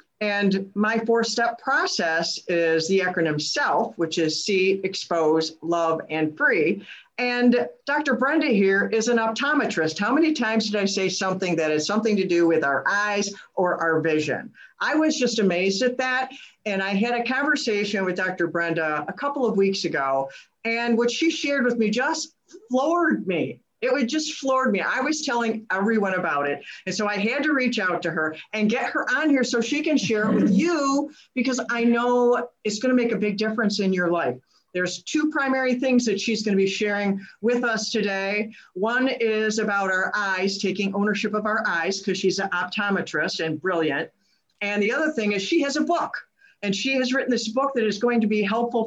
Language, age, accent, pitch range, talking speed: English, 50-69, American, 190-245 Hz, 200 wpm